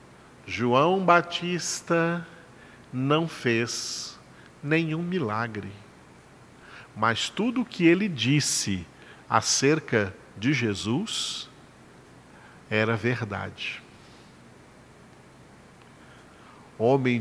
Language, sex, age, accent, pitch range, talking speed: Portuguese, male, 50-69, Brazilian, 120-185 Hz, 65 wpm